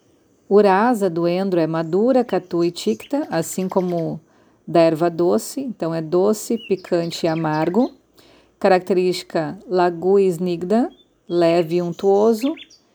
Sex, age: female, 40-59